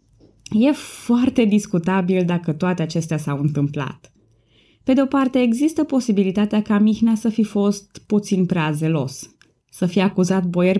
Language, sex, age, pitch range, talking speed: Romanian, female, 20-39, 165-225 Hz, 140 wpm